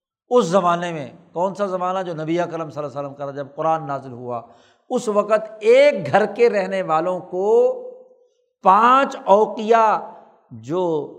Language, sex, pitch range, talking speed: Urdu, male, 165-225 Hz, 145 wpm